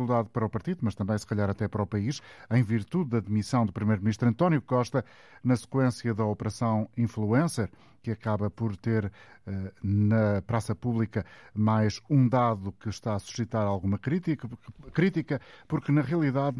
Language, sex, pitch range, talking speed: Portuguese, male, 110-135 Hz, 160 wpm